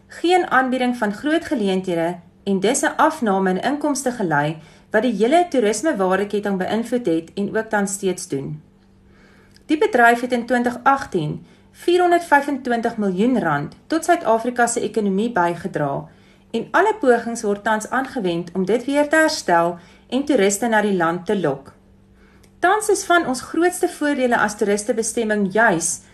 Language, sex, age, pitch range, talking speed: English, female, 40-59, 185-265 Hz, 140 wpm